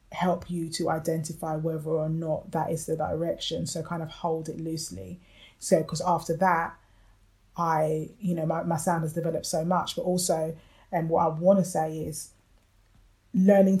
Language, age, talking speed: English, 20-39, 185 wpm